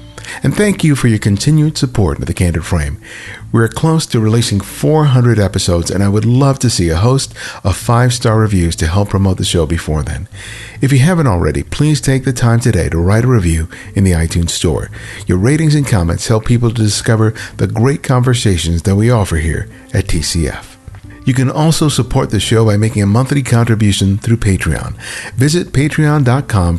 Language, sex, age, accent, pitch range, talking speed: English, male, 50-69, American, 95-125 Hz, 190 wpm